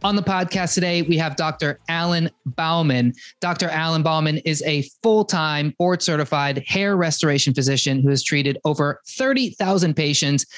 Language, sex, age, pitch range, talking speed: English, male, 20-39, 140-175 Hz, 140 wpm